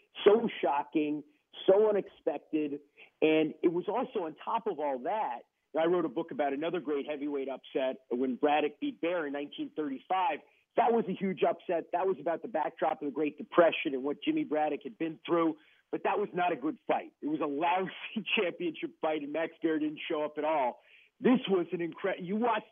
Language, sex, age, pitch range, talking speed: English, male, 40-59, 155-215 Hz, 200 wpm